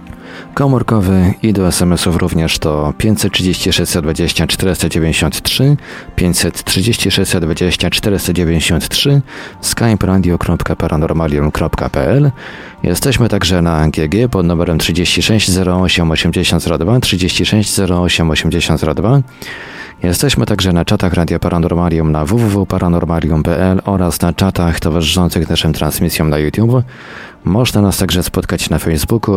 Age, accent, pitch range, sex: 40-59, native, 85-100 Hz, male